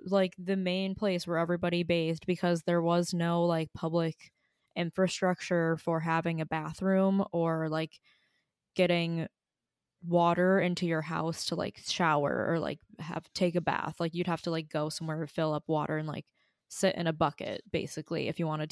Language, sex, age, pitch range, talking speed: English, female, 20-39, 165-195 Hz, 175 wpm